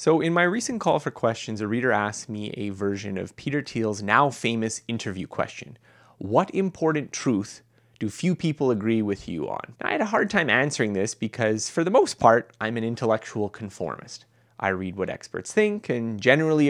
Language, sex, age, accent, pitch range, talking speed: English, male, 30-49, American, 105-145 Hz, 185 wpm